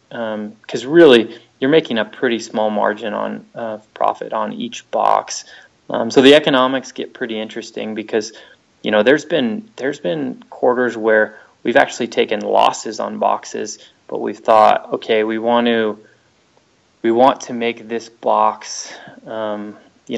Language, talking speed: English, 155 wpm